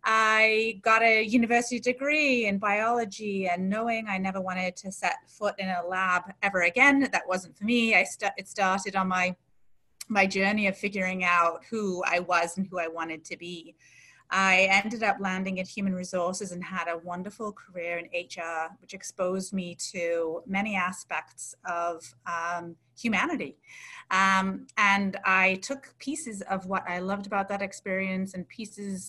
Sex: female